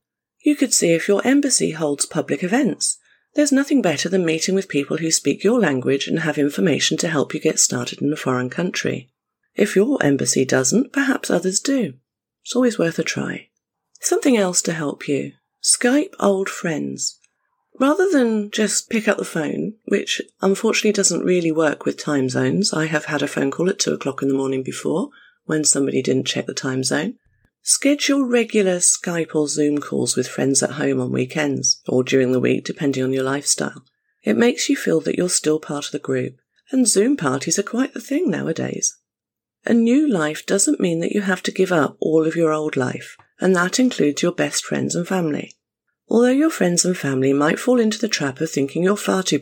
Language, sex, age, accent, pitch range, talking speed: English, female, 40-59, British, 140-225 Hz, 200 wpm